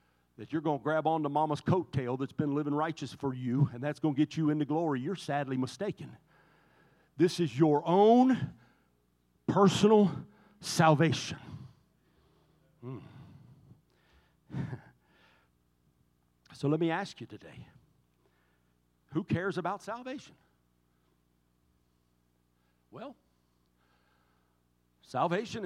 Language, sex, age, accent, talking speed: English, male, 50-69, American, 105 wpm